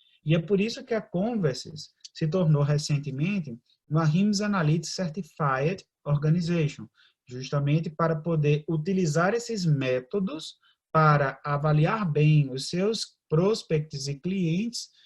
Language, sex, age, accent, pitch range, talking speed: Portuguese, male, 20-39, Brazilian, 145-185 Hz, 115 wpm